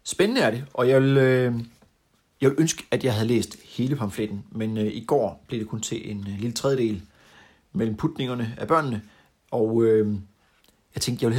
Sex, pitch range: male, 105-135 Hz